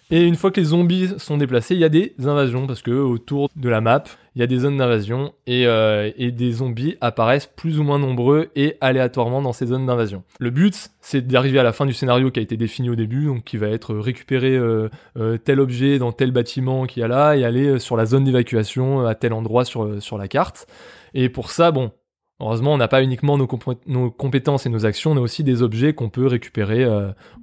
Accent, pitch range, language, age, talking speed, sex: French, 120-145 Hz, French, 20-39, 240 wpm, male